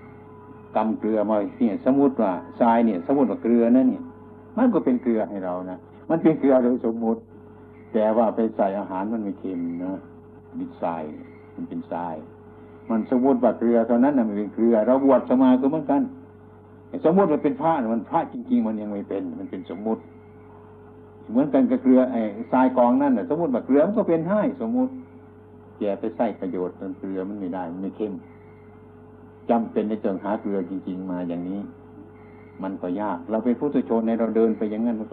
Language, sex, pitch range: Thai, male, 90-120 Hz